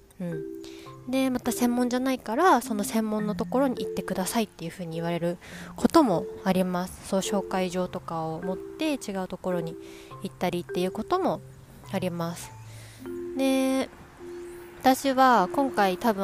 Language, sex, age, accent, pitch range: Japanese, female, 20-39, native, 175-240 Hz